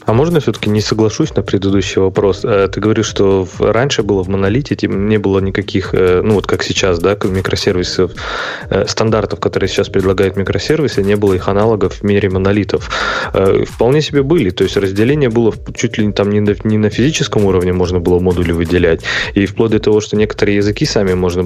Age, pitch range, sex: 20-39, 95-110 Hz, male